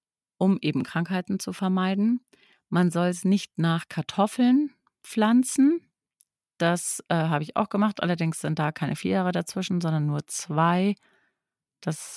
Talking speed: 145 wpm